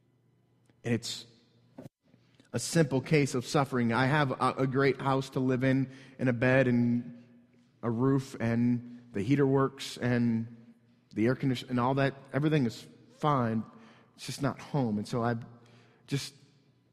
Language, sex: English, male